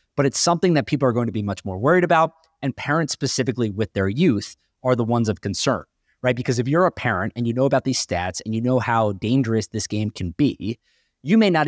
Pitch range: 110-155 Hz